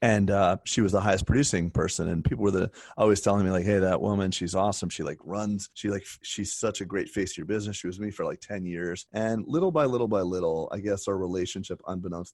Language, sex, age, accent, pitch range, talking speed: English, male, 30-49, American, 85-105 Hz, 260 wpm